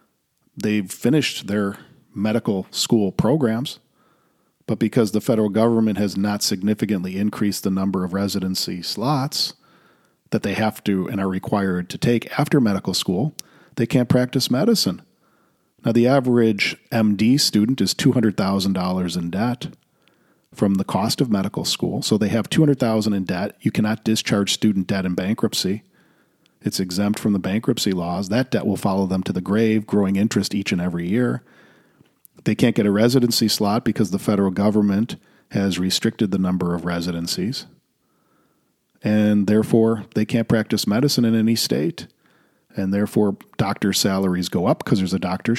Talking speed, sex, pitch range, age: 155 wpm, male, 95-115 Hz, 40-59